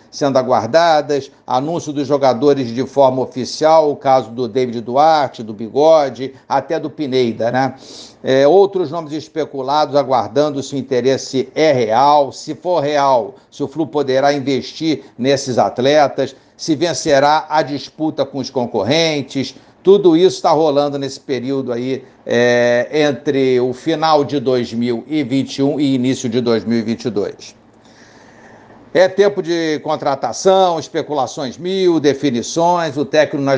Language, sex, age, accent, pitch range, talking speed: Portuguese, male, 60-79, Brazilian, 130-155 Hz, 125 wpm